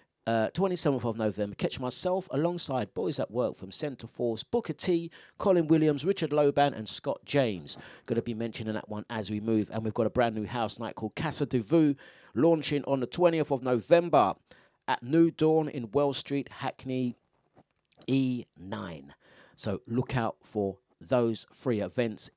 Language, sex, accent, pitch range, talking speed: English, male, British, 110-160 Hz, 170 wpm